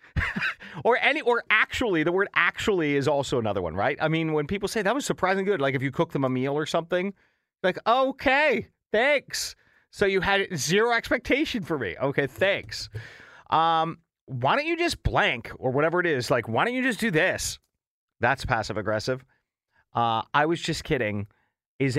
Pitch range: 120-180 Hz